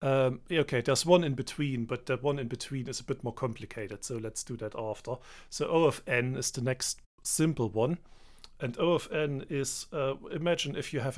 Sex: male